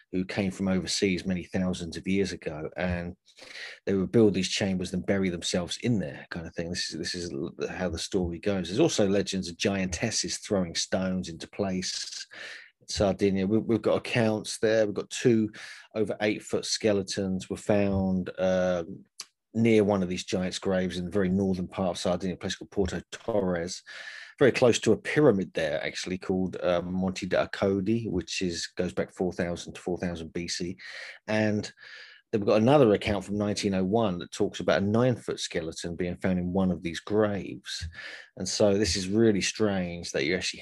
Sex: male